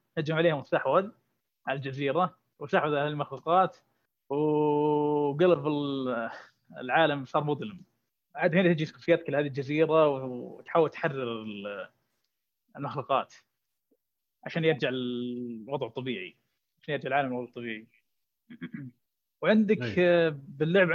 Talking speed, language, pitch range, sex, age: 95 wpm, Arabic, 135-170 Hz, male, 20-39